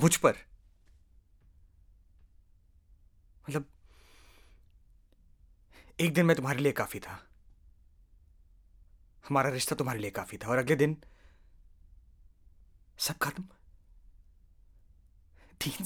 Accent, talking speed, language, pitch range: Indian, 85 wpm, English, 85-110 Hz